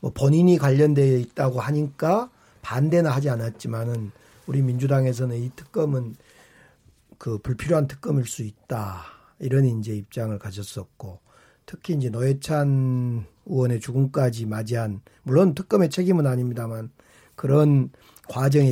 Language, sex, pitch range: Korean, male, 115-150 Hz